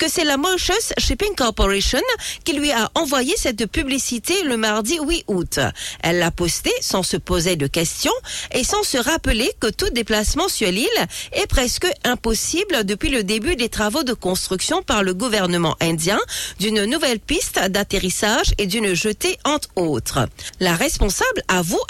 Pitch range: 180-290 Hz